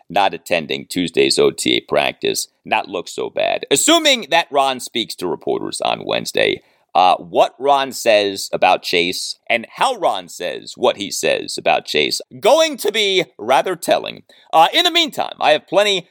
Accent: American